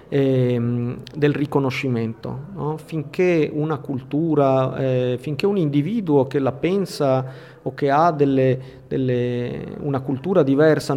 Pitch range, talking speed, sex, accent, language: 130-155 Hz, 115 wpm, male, native, Italian